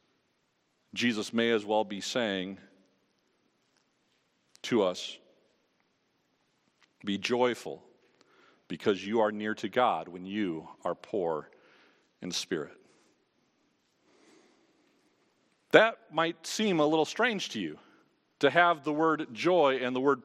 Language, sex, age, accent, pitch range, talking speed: English, male, 50-69, American, 115-170 Hz, 115 wpm